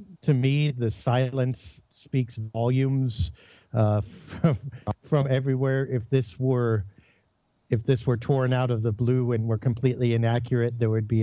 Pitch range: 115-135 Hz